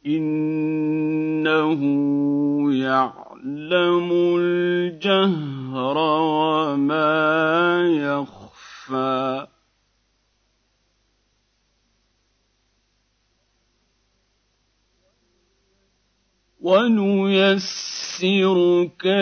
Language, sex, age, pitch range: Arabic, male, 50-69, 120-175 Hz